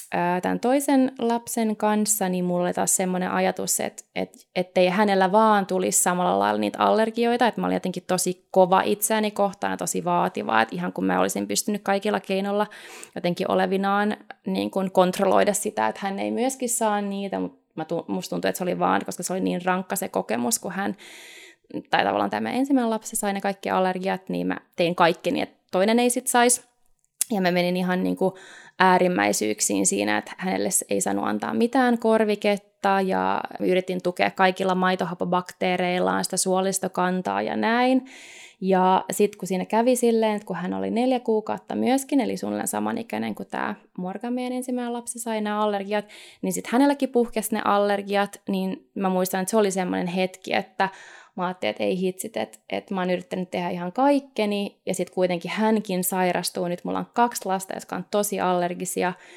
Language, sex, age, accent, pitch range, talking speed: Finnish, female, 20-39, native, 175-215 Hz, 175 wpm